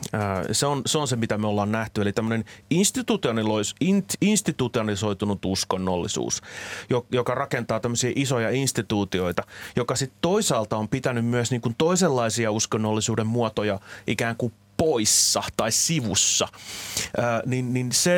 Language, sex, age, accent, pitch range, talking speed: Finnish, male, 30-49, native, 105-130 Hz, 115 wpm